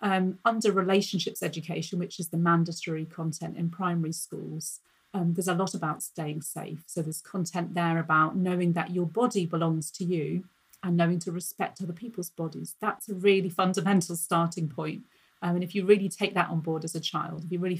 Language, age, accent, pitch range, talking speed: English, 30-49, British, 165-190 Hz, 200 wpm